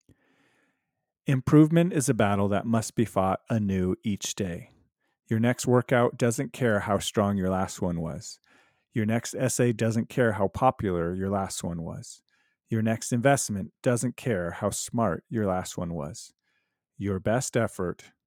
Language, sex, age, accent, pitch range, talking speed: English, male, 40-59, American, 100-125 Hz, 155 wpm